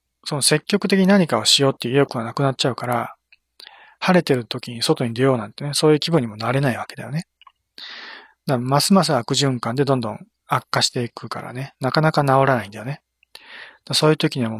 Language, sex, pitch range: Japanese, male, 115-145 Hz